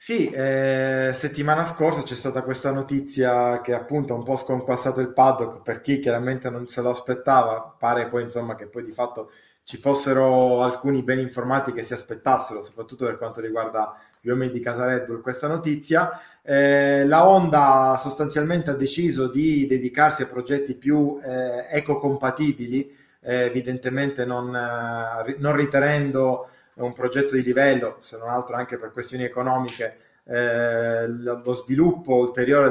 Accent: native